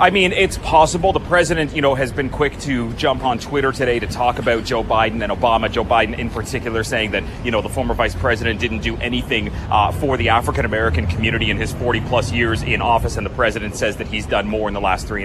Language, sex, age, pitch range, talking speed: English, male, 30-49, 110-130 Hz, 245 wpm